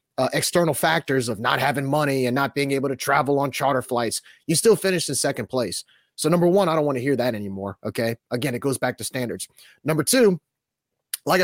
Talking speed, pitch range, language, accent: 220 wpm, 135-185 Hz, English, American